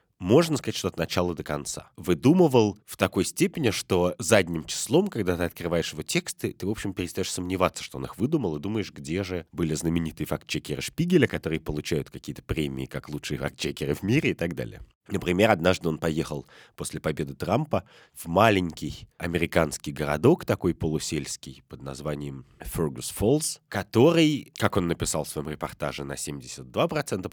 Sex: male